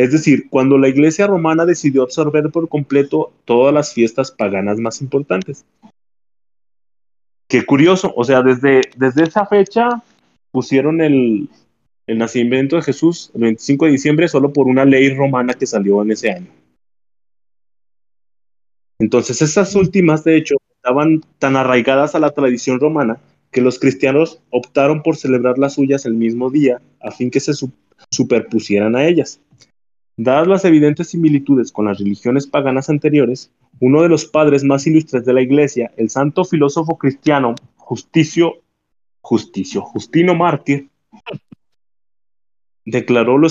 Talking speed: 140 wpm